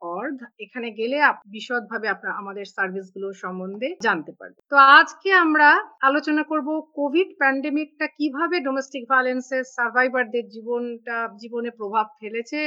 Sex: female